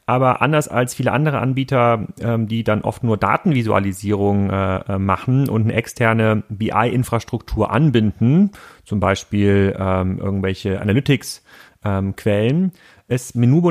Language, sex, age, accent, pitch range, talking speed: German, male, 30-49, German, 110-135 Hz, 100 wpm